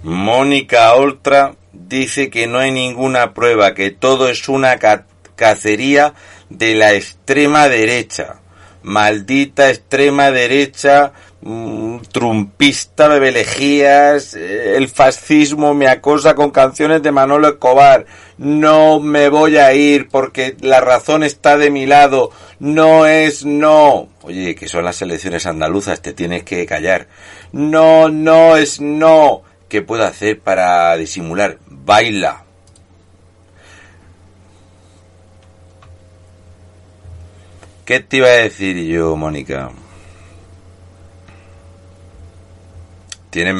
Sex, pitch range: male, 90-140 Hz